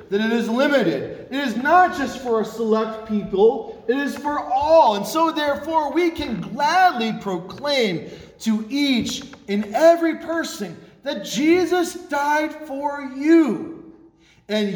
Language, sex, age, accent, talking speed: English, male, 40-59, American, 140 wpm